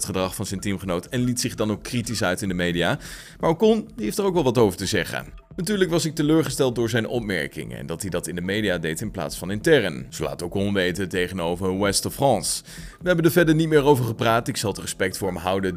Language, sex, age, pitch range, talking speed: Dutch, male, 30-49, 95-145 Hz, 255 wpm